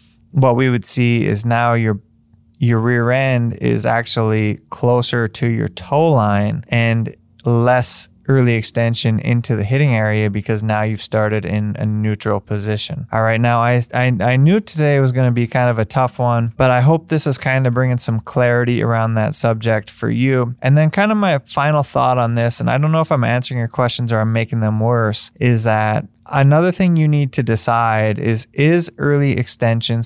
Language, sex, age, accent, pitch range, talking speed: English, male, 20-39, American, 115-135 Hz, 200 wpm